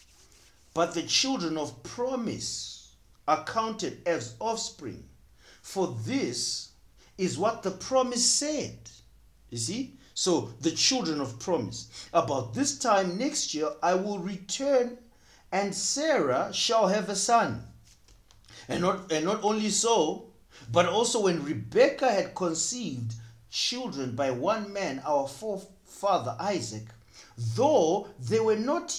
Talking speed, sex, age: 120 wpm, male, 50-69